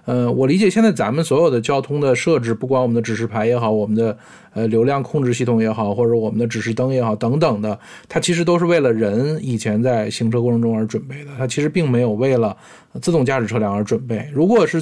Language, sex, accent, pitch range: Chinese, male, native, 115-150 Hz